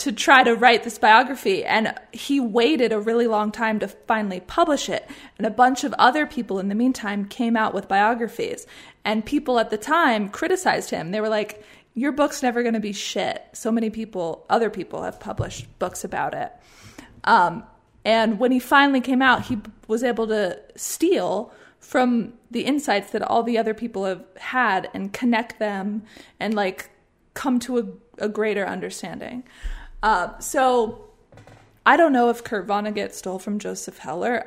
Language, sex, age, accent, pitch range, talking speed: English, female, 20-39, American, 210-250 Hz, 180 wpm